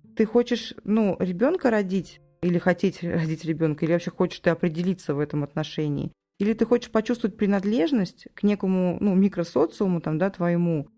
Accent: native